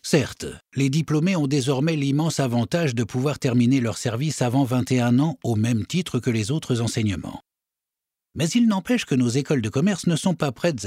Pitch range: 125-185 Hz